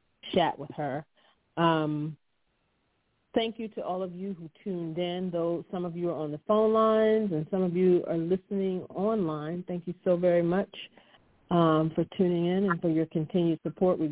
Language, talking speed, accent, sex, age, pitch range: English, 185 wpm, American, female, 40-59, 165-200 Hz